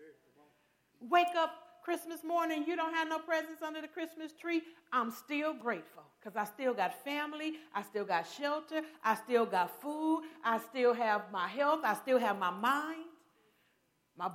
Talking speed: 165 wpm